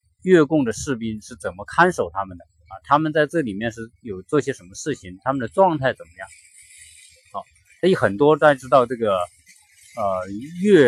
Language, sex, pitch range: Chinese, male, 110-155 Hz